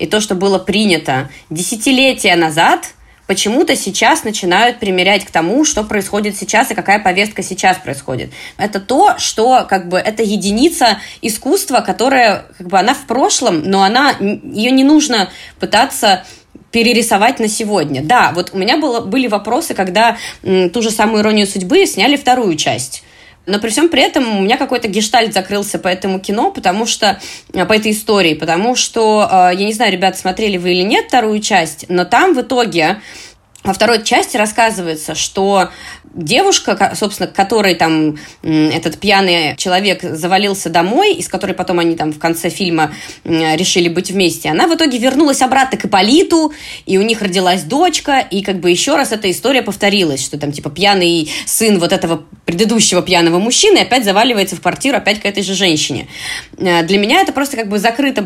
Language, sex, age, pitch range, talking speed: Russian, female, 20-39, 180-240 Hz, 170 wpm